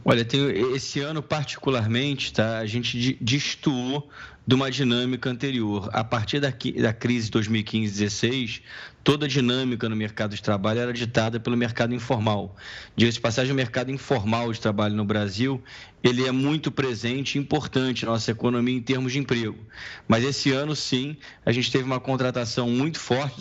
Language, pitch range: Portuguese, 115-135 Hz